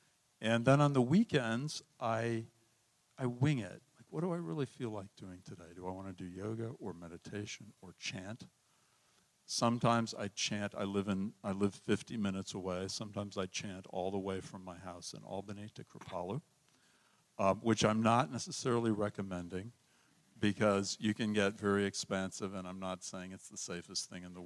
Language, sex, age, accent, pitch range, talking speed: English, male, 60-79, American, 95-120 Hz, 180 wpm